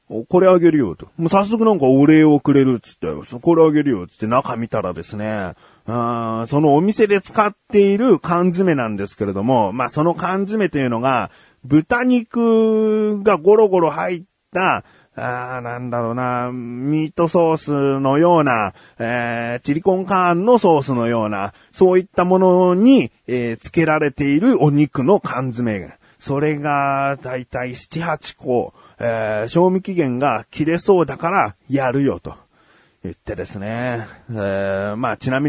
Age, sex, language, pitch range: 30-49, male, Japanese, 120-175 Hz